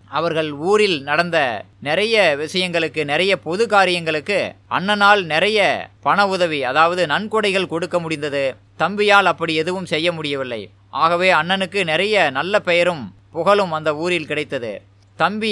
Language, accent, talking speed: Tamil, native, 120 wpm